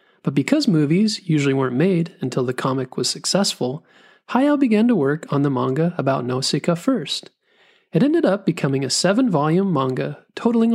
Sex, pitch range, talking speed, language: male, 145-215 Hz, 160 wpm, English